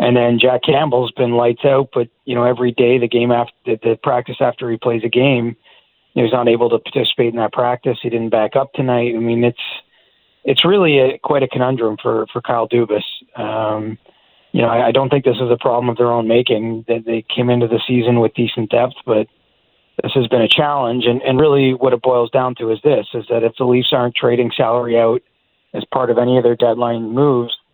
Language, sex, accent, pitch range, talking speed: English, male, American, 115-125 Hz, 225 wpm